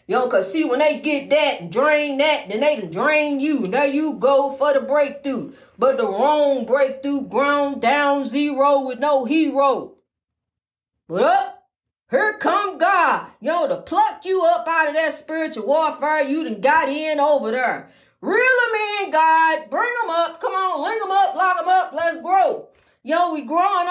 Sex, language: female, English